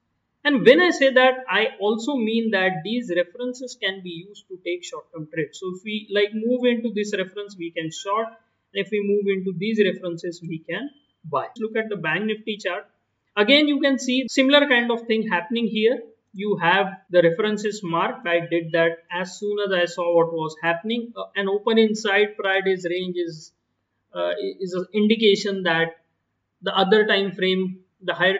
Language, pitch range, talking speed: English, 170-225 Hz, 190 wpm